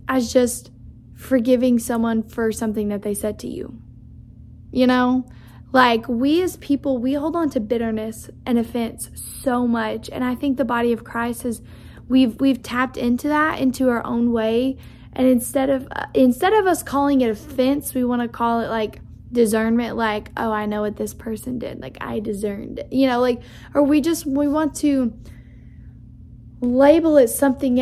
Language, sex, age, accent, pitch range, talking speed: English, female, 10-29, American, 230-265 Hz, 180 wpm